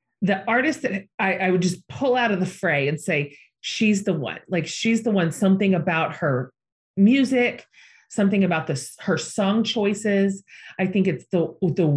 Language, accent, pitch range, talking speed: English, American, 165-210 Hz, 180 wpm